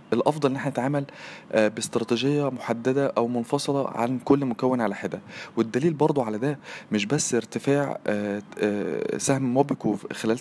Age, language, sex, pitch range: 20-39, Arabic, male, 125-155 Hz